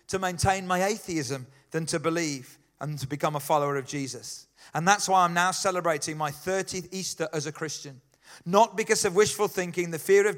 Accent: British